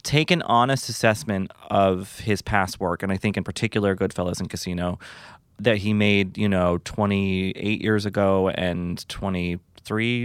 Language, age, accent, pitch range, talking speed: English, 30-49, American, 95-115 Hz, 150 wpm